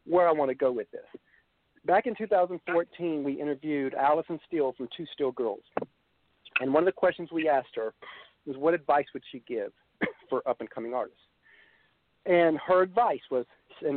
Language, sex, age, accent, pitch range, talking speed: English, male, 50-69, American, 155-195 Hz, 170 wpm